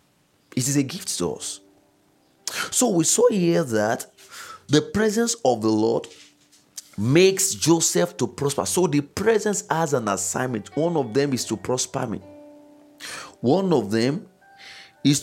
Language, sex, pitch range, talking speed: English, male, 125-175 Hz, 145 wpm